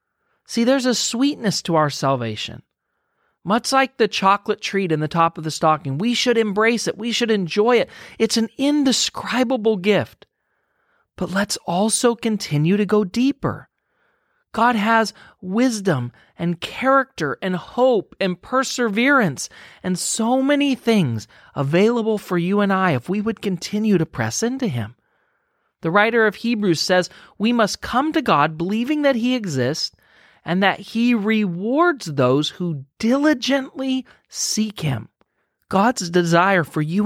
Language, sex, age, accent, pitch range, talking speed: English, male, 40-59, American, 170-235 Hz, 145 wpm